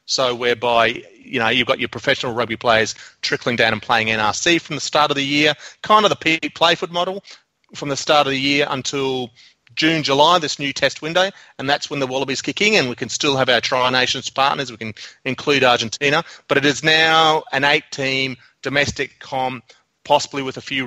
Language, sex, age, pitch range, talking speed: English, male, 30-49, 120-155 Hz, 200 wpm